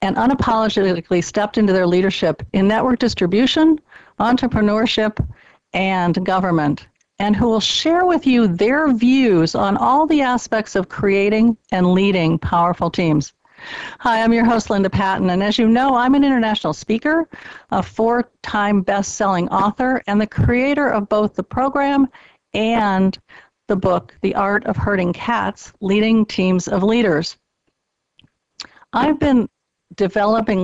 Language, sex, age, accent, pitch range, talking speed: English, female, 50-69, American, 195-240 Hz, 140 wpm